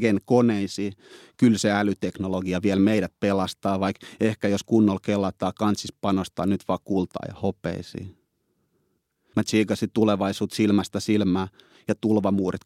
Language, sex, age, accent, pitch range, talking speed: Finnish, male, 30-49, native, 105-125 Hz, 125 wpm